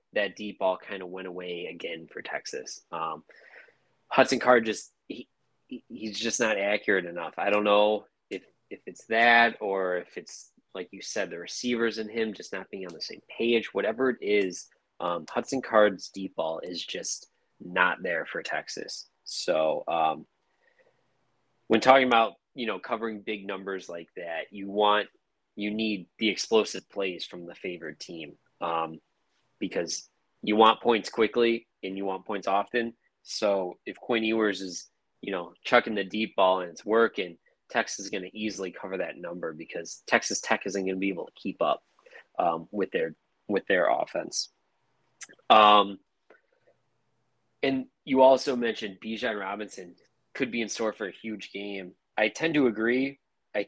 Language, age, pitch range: English, 20-39, 100-120 Hz